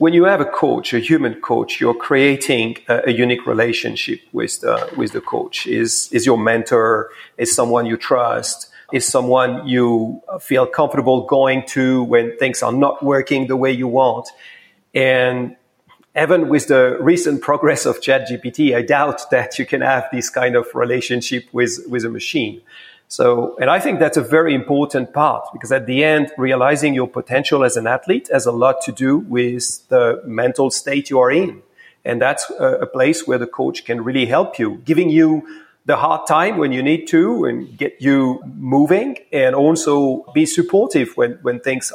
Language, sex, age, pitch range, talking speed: English, male, 40-59, 125-155 Hz, 180 wpm